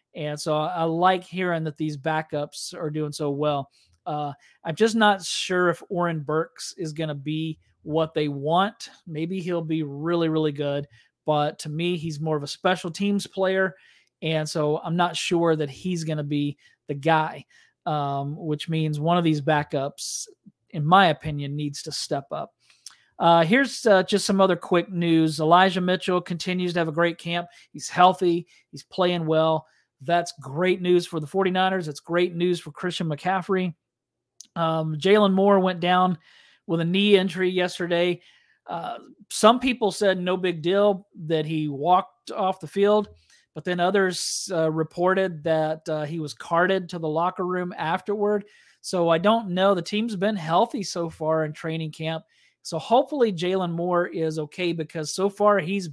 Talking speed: 175 wpm